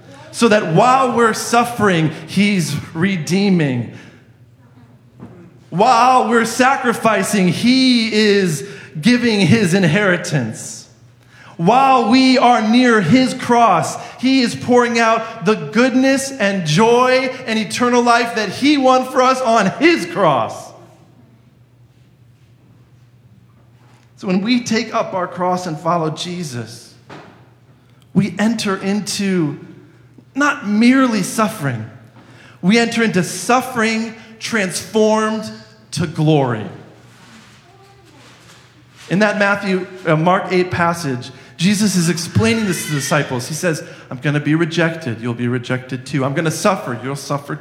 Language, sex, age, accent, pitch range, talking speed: English, male, 40-59, American, 135-225 Hz, 120 wpm